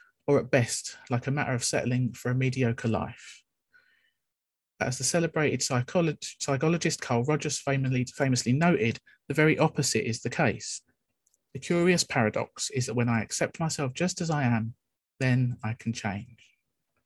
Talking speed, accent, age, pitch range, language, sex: 160 wpm, British, 40-59, 120-145 Hz, English, male